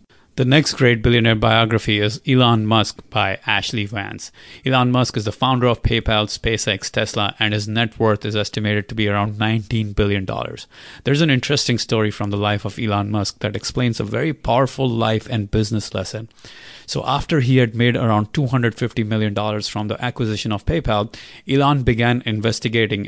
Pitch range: 110-130 Hz